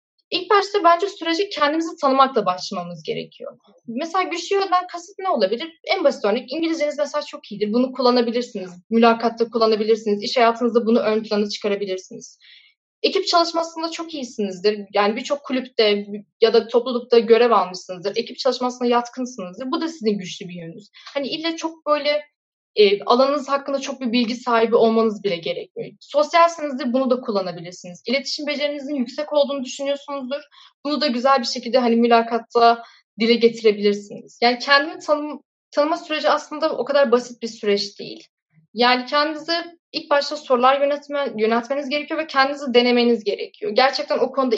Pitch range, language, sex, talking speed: 230-300 Hz, Turkish, female, 150 wpm